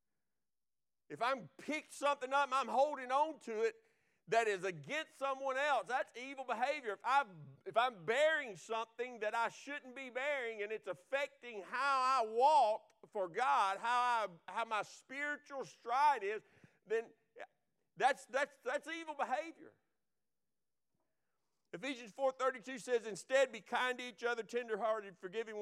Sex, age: male, 50-69